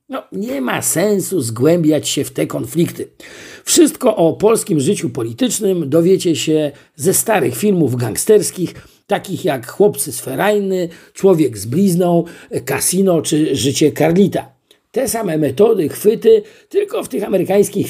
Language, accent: Polish, native